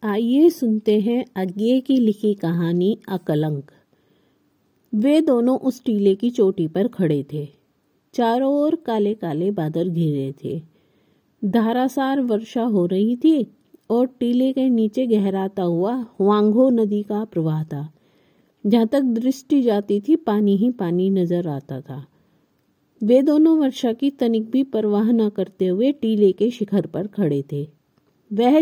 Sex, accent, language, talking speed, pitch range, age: female, native, Hindi, 145 wpm, 180-245 Hz, 50-69